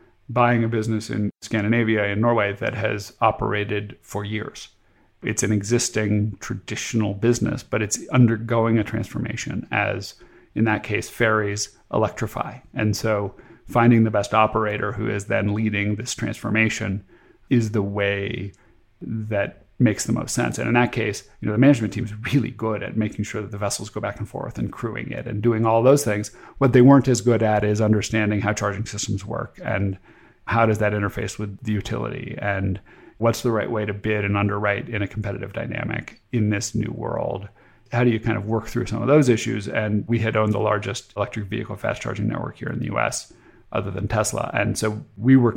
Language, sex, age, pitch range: English, male, 40-59, 105-115 Hz